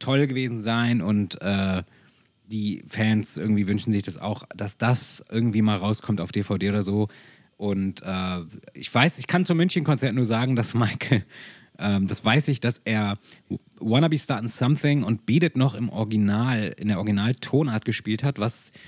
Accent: German